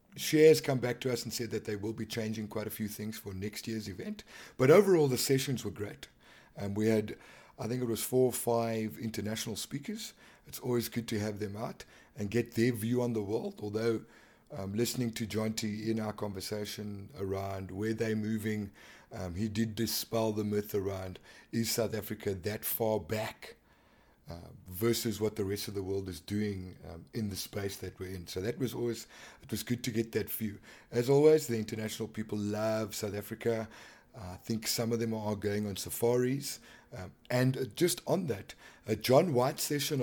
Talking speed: 195 wpm